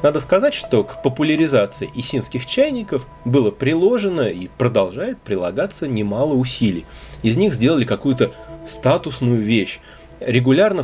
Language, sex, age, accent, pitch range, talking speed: Russian, male, 30-49, native, 110-145 Hz, 115 wpm